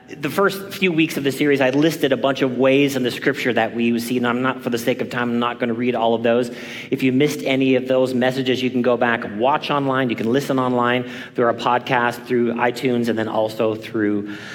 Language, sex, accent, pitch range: English, male, American, 130-180 Hz